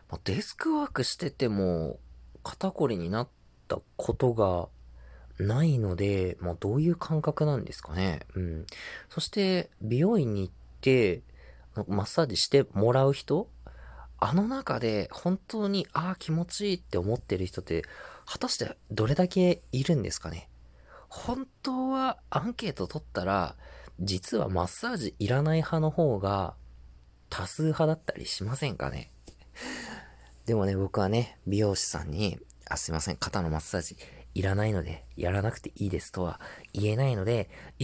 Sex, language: male, Japanese